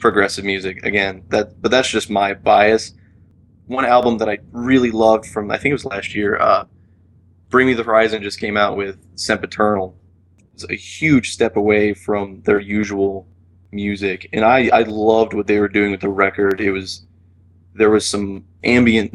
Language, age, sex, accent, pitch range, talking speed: English, 20-39, male, American, 90-110 Hz, 185 wpm